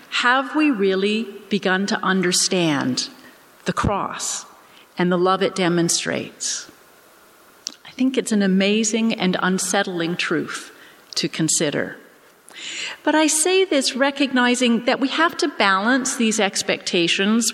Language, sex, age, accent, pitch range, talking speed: English, female, 40-59, American, 185-245 Hz, 120 wpm